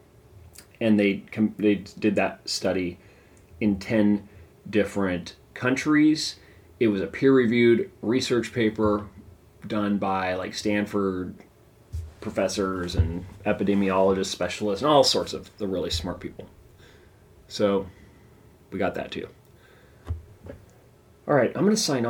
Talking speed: 115 wpm